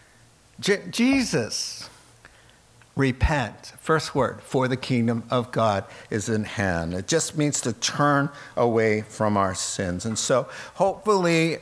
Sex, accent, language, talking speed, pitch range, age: male, American, English, 125 wpm, 115-160 Hz, 50-69